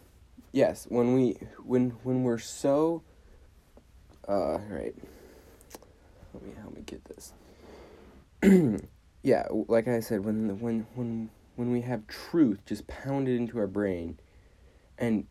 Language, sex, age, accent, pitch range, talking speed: English, male, 20-39, American, 100-120 Hz, 125 wpm